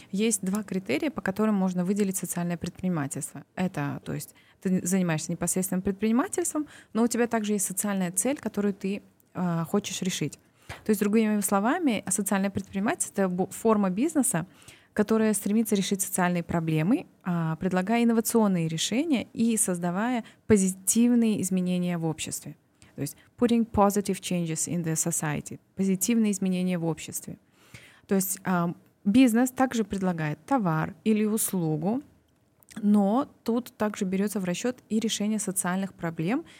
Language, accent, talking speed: Russian, native, 135 wpm